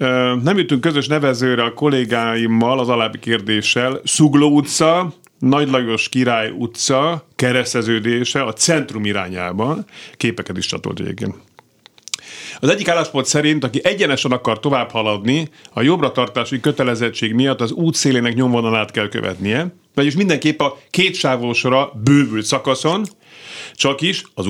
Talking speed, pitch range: 120 wpm, 115-150 Hz